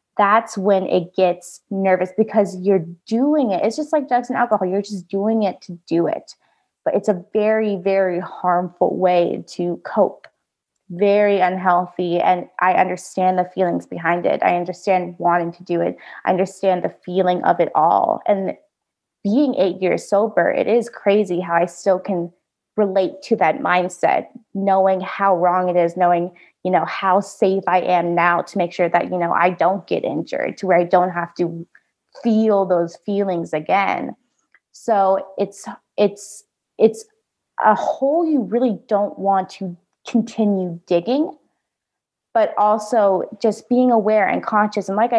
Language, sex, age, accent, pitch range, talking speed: English, female, 20-39, American, 180-215 Hz, 165 wpm